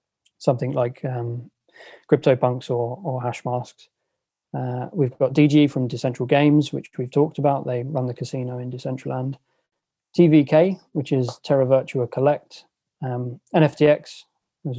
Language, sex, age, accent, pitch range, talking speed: English, male, 20-39, British, 125-150 Hz, 135 wpm